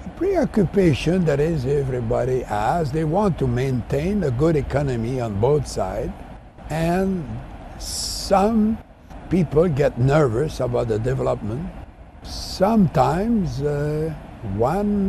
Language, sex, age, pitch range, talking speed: English, male, 60-79, 120-180 Hz, 100 wpm